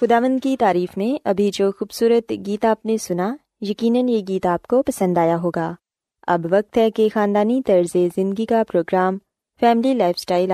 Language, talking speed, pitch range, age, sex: Urdu, 175 wpm, 175-240 Hz, 20-39, female